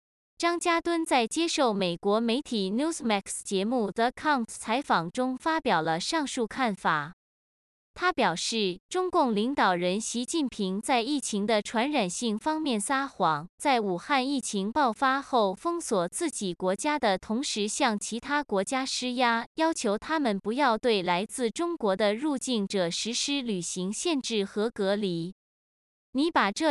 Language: Chinese